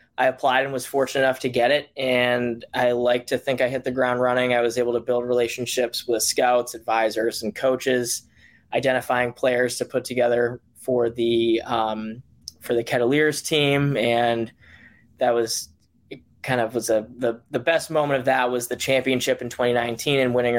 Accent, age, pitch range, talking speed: American, 20-39, 115-130 Hz, 185 wpm